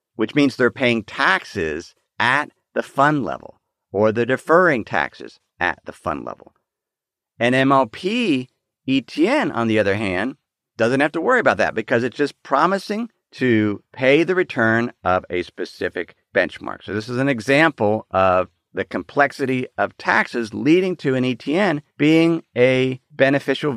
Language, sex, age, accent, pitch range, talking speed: English, male, 50-69, American, 105-150 Hz, 150 wpm